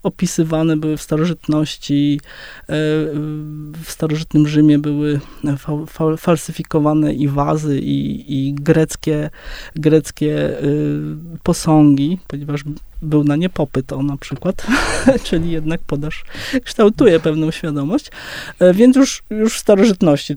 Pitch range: 145-160 Hz